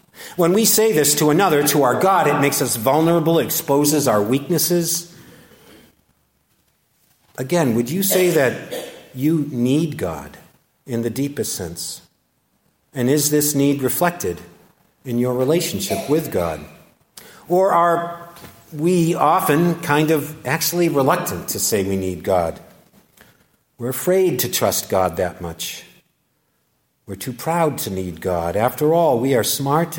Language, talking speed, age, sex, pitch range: English, 140 wpm, 50-69, male, 110-155 Hz